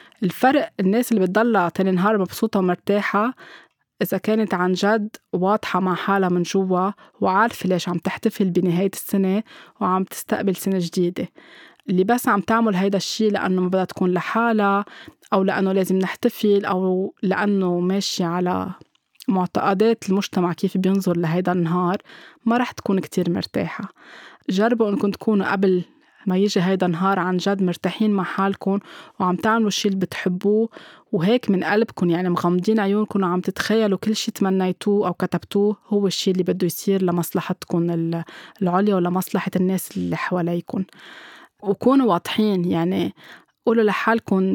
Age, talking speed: 20-39, 140 wpm